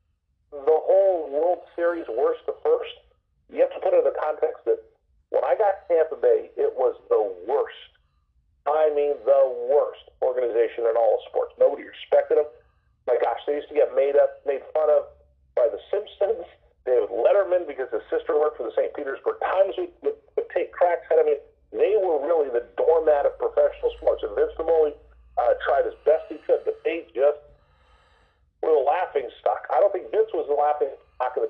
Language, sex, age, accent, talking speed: English, male, 50-69, American, 195 wpm